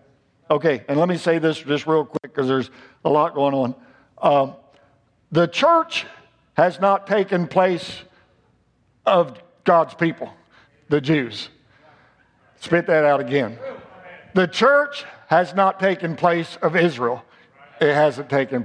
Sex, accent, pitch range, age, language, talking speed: male, American, 150-200 Hz, 60-79, English, 135 wpm